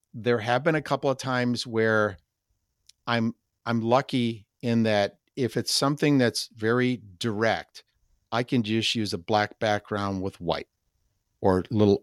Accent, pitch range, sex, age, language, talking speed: American, 105-125 Hz, male, 50-69, English, 155 wpm